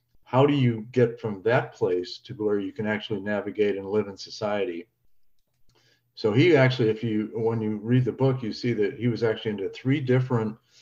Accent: American